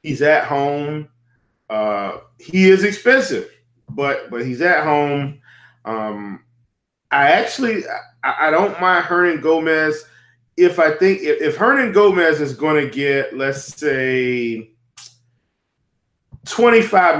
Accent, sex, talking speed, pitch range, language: American, male, 120 wpm, 125-170 Hz, English